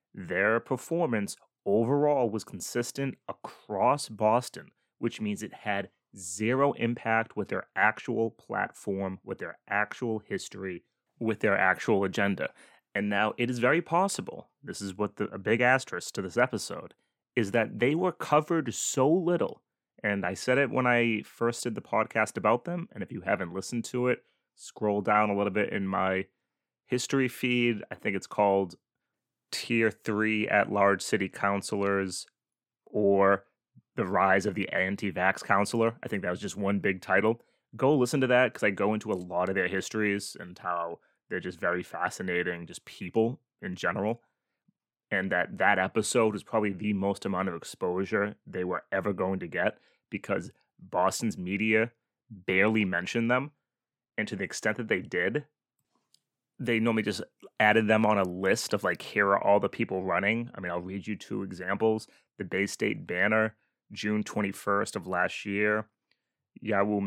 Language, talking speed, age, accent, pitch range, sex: English, 165 wpm, 30-49, American, 100-115 Hz, male